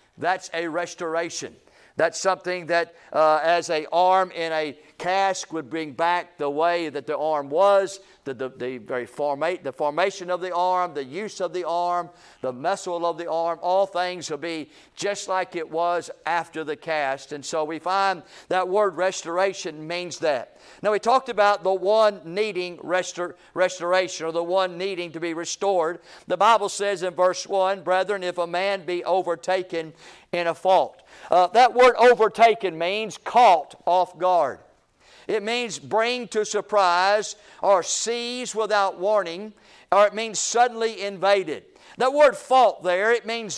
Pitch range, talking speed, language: 170-210 Hz, 165 wpm, English